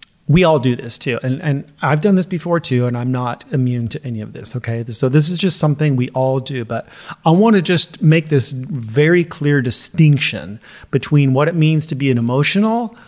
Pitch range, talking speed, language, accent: 130-160 Hz, 210 wpm, English, American